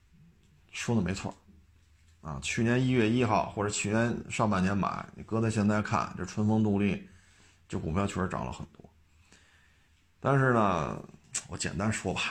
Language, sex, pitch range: Chinese, male, 90-110 Hz